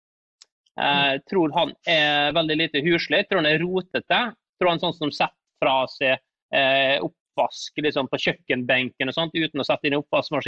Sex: male